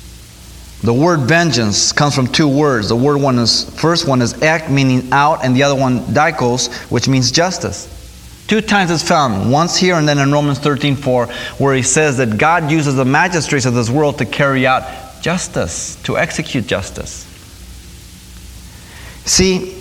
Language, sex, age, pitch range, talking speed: English, male, 30-49, 120-160 Hz, 170 wpm